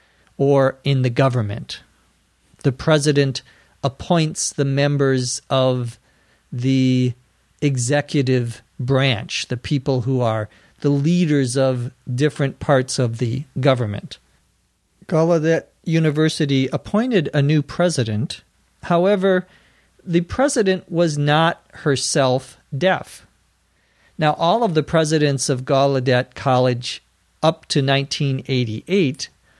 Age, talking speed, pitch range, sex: 50-69, 100 wpm, 125-155 Hz, male